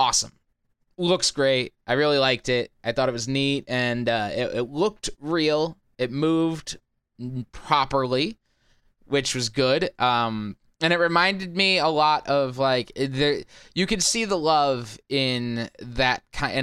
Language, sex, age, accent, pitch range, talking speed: English, male, 20-39, American, 115-150 Hz, 150 wpm